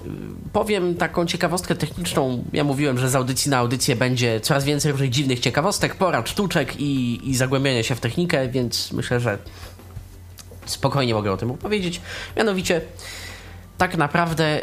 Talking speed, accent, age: 150 wpm, native, 20-39